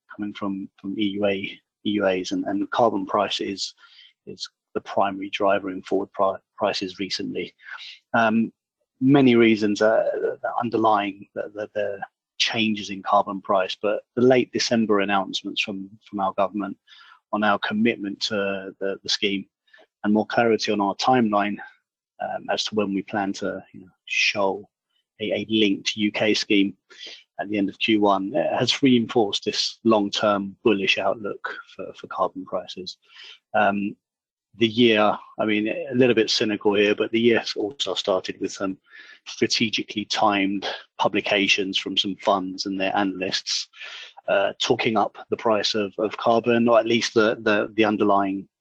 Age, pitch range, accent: 30-49, 100-115 Hz, British